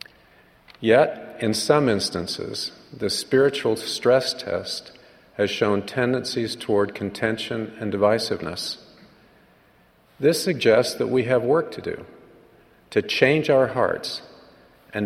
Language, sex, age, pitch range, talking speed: English, male, 50-69, 105-125 Hz, 110 wpm